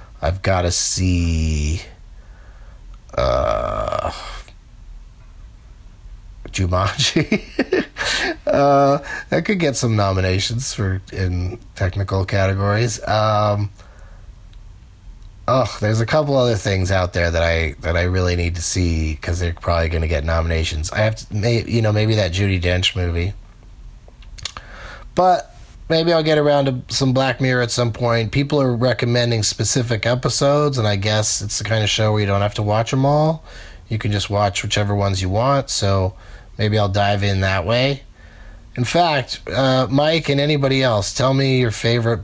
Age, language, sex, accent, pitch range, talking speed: 30-49, English, male, American, 95-130 Hz, 155 wpm